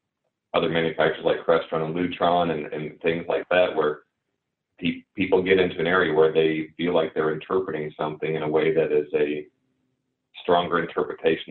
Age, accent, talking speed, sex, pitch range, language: 40-59, American, 170 wpm, male, 80-100 Hz, English